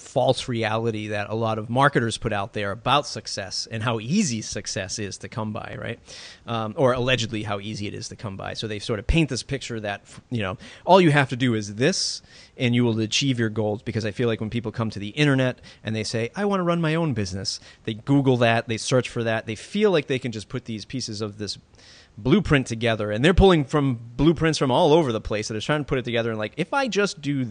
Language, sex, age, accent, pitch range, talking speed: English, male, 30-49, American, 105-135 Hz, 255 wpm